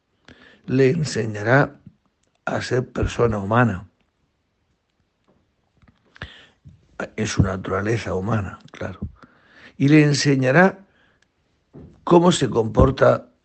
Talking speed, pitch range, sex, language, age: 75 wpm, 95-125 Hz, male, Spanish, 60-79